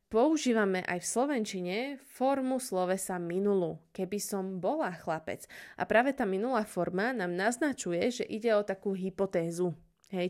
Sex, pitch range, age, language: female, 180-235 Hz, 20-39, Slovak